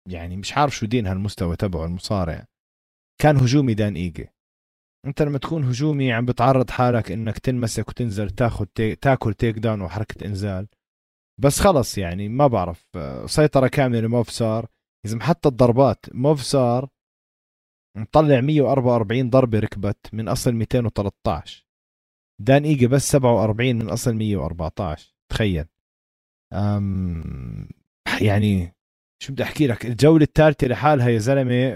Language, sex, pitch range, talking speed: Arabic, male, 100-135 Hz, 125 wpm